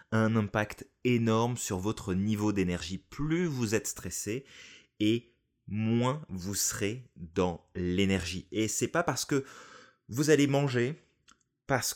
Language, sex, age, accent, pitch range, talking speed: French, male, 20-39, French, 95-130 Hz, 135 wpm